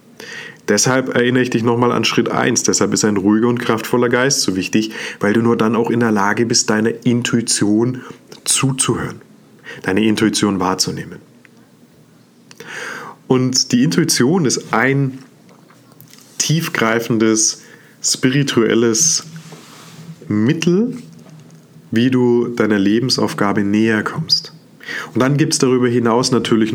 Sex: male